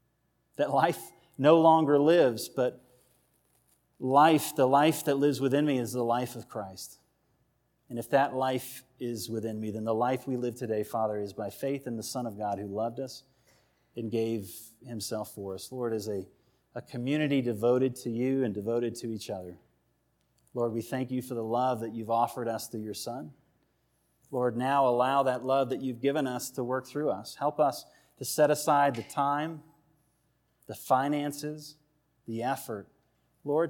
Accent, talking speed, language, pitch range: American, 180 wpm, English, 115-140 Hz